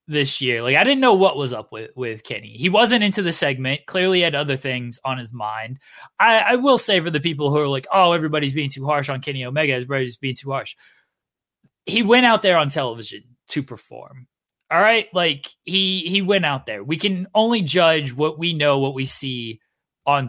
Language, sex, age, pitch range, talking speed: English, male, 20-39, 130-175 Hz, 215 wpm